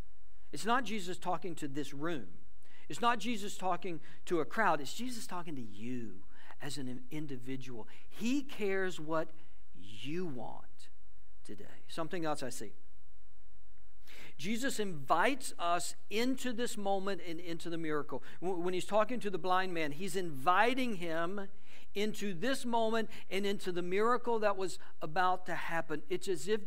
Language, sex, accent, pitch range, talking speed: English, male, American, 140-210 Hz, 150 wpm